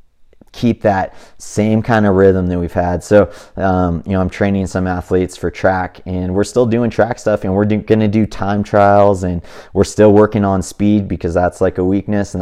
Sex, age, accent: male, 30-49, American